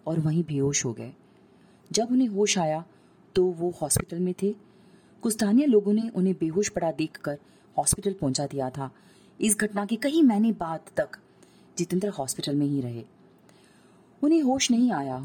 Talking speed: 160 wpm